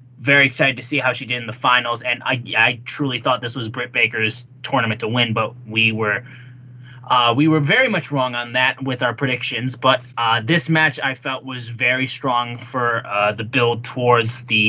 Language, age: English, 20-39